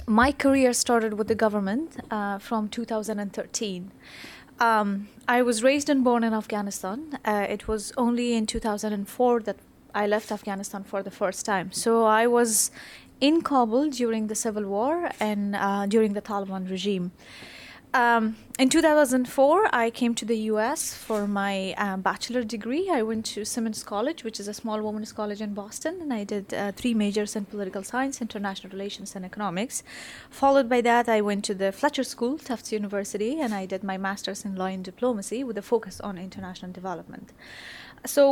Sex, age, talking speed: female, 20-39, 175 wpm